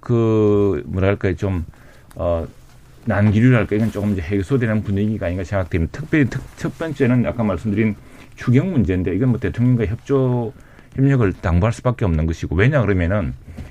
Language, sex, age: Korean, male, 40-59